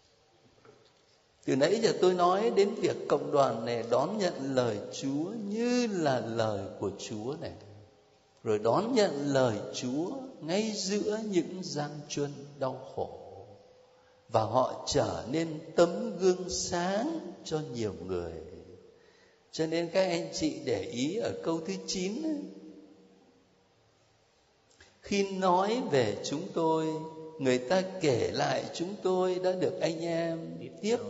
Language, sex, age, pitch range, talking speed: Vietnamese, male, 60-79, 135-195 Hz, 135 wpm